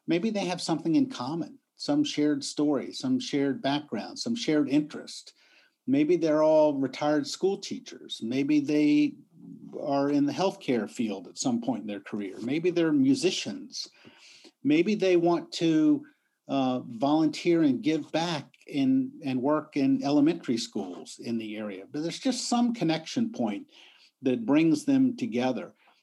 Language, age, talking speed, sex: English, 50-69, 150 wpm, male